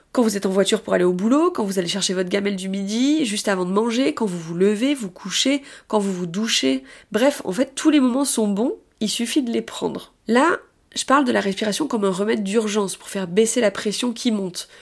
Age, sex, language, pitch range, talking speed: 20-39, female, French, 200-270 Hz, 245 wpm